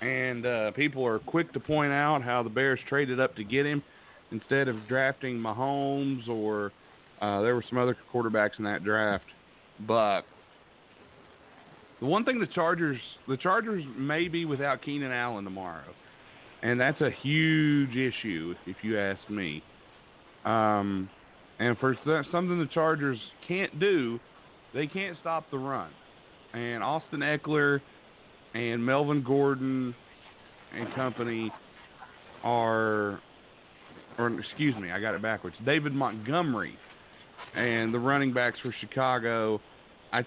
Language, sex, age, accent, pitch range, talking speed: English, male, 40-59, American, 110-140 Hz, 135 wpm